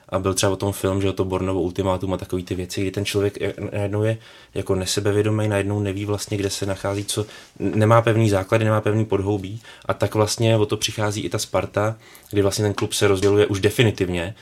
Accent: native